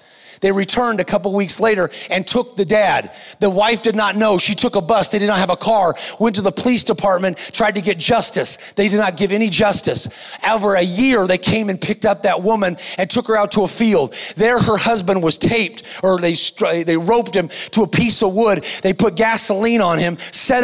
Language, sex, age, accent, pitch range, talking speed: English, male, 30-49, American, 190-225 Hz, 230 wpm